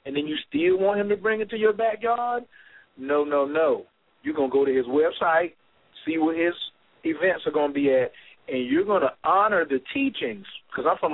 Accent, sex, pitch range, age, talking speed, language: American, male, 135-220 Hz, 40-59, 220 wpm, English